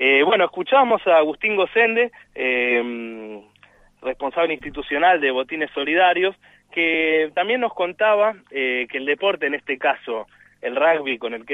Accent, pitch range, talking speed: Argentinian, 130-185 Hz, 145 wpm